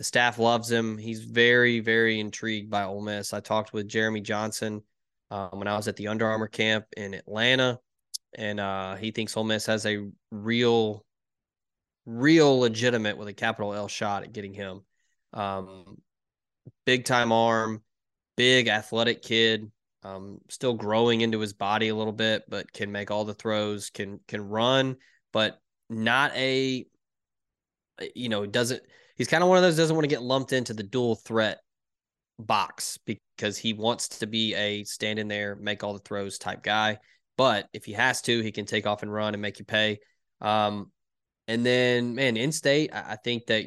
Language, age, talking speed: English, 20-39, 180 wpm